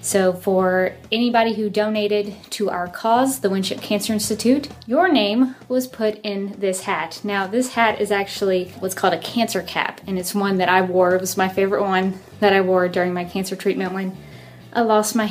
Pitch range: 185-220 Hz